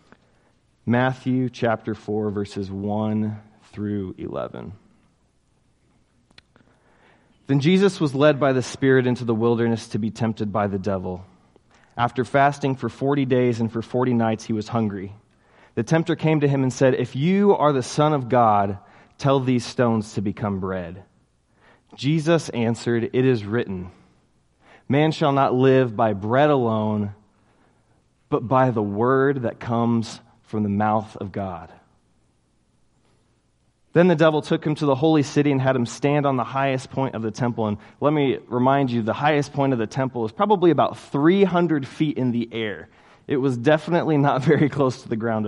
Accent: American